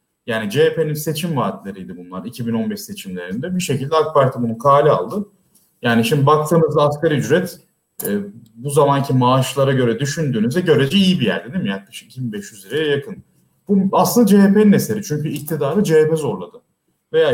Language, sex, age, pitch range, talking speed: Turkish, male, 30-49, 125-180 Hz, 150 wpm